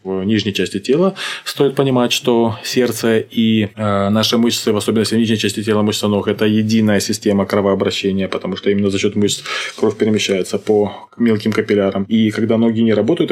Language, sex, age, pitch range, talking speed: Russian, male, 20-39, 100-115 Hz, 170 wpm